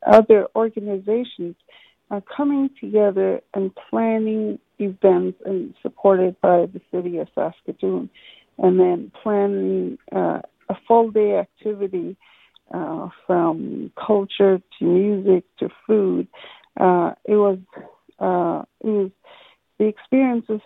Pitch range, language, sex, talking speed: 185-220 Hz, English, female, 105 wpm